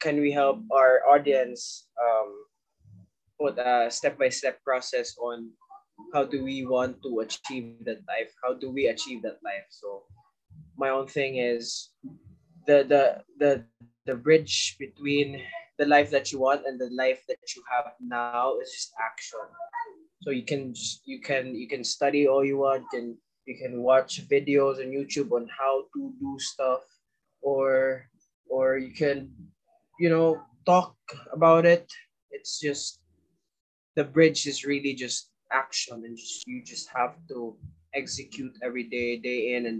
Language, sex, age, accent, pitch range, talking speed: English, male, 20-39, Filipino, 125-170 Hz, 160 wpm